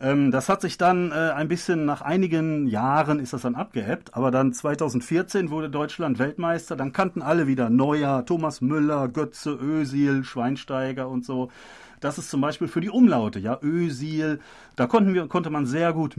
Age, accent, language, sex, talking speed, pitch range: 40-59, German, German, male, 175 wpm, 125-165 Hz